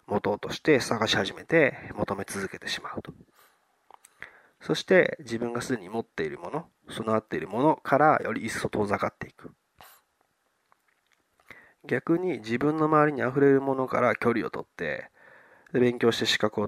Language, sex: Japanese, male